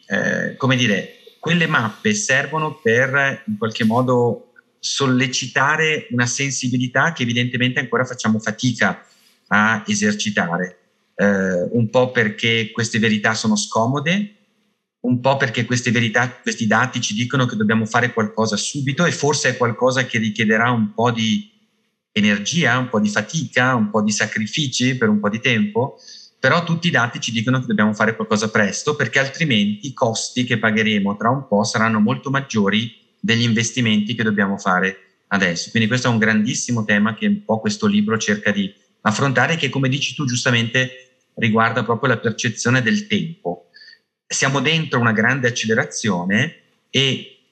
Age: 30-49